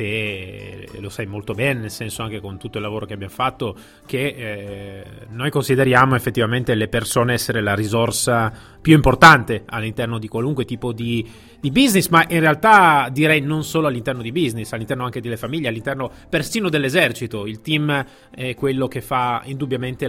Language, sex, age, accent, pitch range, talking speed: Italian, male, 30-49, native, 110-140 Hz, 170 wpm